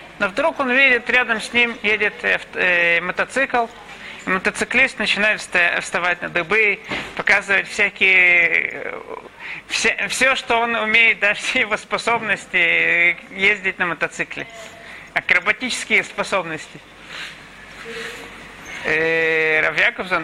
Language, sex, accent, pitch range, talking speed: Russian, male, native, 175-235 Hz, 95 wpm